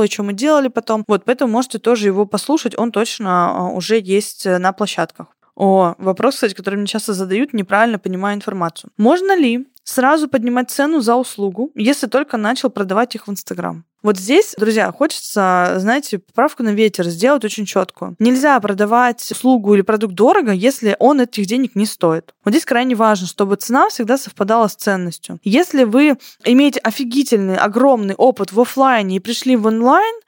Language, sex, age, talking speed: Russian, female, 20-39, 170 wpm